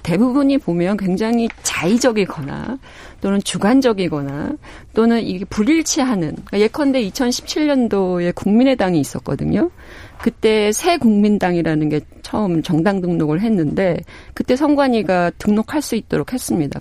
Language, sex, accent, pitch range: Korean, female, native, 175-250 Hz